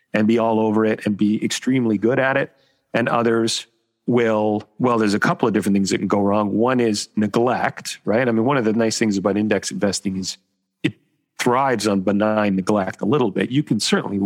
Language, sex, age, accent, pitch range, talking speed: English, male, 40-59, American, 105-120 Hz, 215 wpm